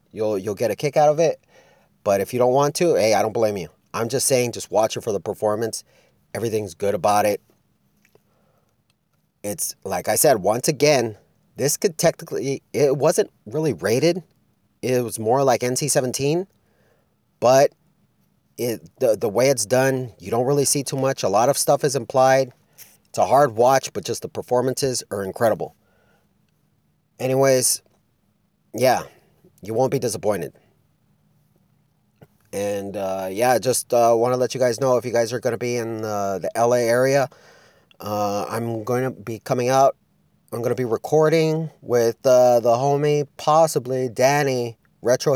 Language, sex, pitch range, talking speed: English, male, 115-140 Hz, 170 wpm